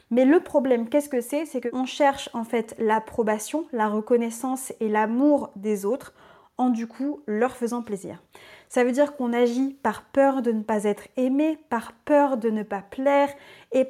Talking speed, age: 185 wpm, 20-39